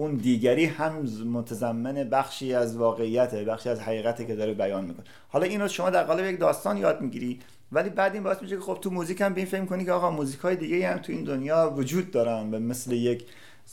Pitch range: 110-145 Hz